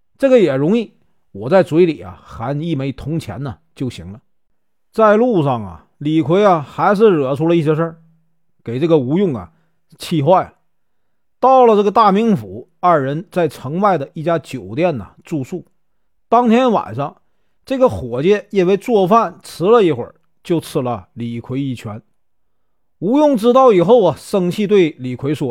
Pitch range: 130-195 Hz